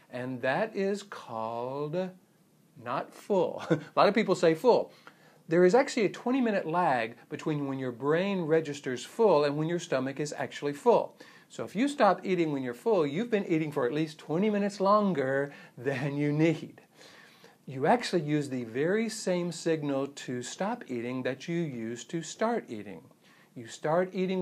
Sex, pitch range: male, 140-185 Hz